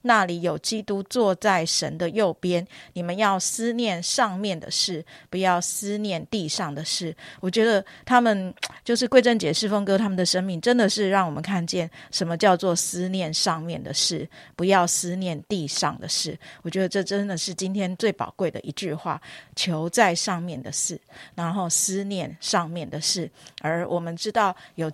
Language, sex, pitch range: Chinese, female, 165-200 Hz